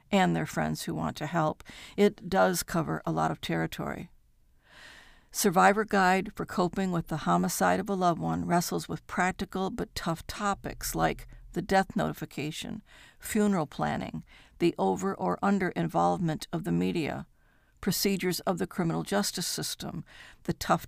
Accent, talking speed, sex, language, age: American, 150 wpm, female, English, 60-79